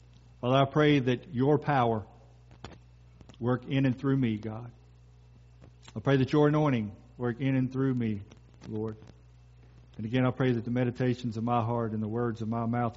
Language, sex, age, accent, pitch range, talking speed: English, male, 50-69, American, 110-175 Hz, 180 wpm